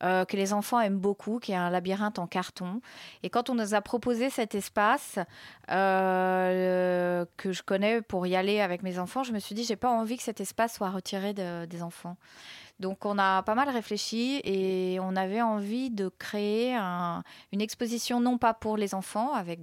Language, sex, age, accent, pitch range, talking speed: French, female, 30-49, French, 185-230 Hz, 200 wpm